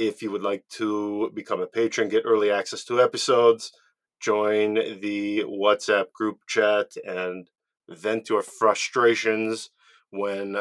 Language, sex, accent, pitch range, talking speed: English, male, American, 105-125 Hz, 130 wpm